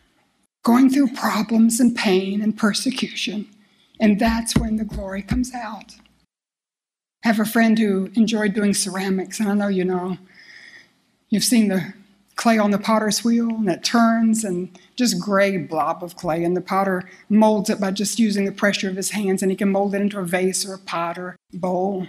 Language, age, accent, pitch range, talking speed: English, 60-79, American, 195-230 Hz, 190 wpm